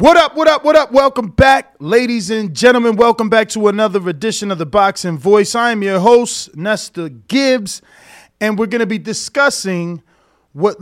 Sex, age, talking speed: male, 30-49, 185 wpm